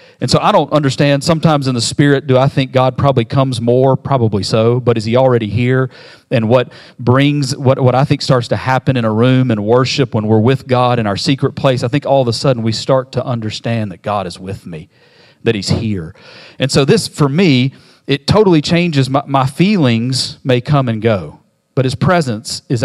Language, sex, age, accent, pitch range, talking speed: English, male, 40-59, American, 120-145 Hz, 220 wpm